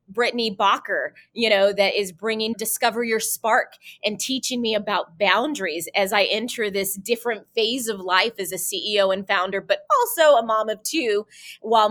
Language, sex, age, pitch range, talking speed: English, female, 20-39, 185-225 Hz, 175 wpm